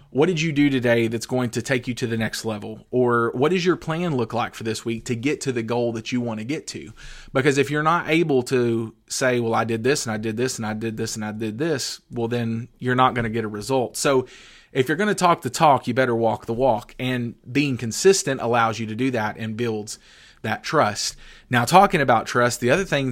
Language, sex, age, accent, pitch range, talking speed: English, male, 30-49, American, 115-140 Hz, 255 wpm